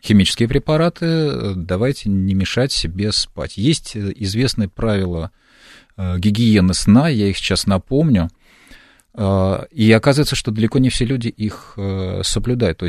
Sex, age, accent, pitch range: male, 40-59, native, 90-115 Hz